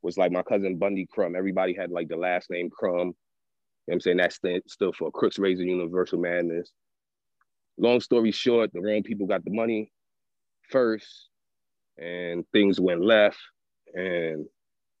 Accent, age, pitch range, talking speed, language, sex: American, 30-49, 95-110 Hz, 165 wpm, English, male